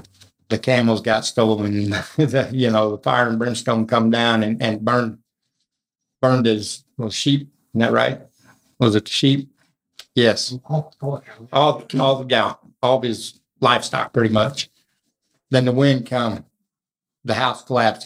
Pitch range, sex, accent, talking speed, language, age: 110-135 Hz, male, American, 155 wpm, English, 60-79